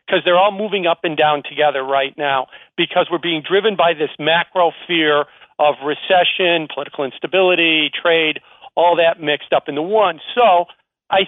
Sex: male